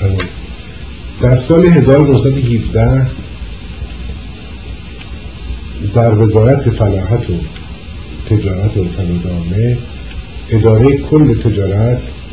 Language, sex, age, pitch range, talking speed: Persian, male, 50-69, 80-115 Hz, 65 wpm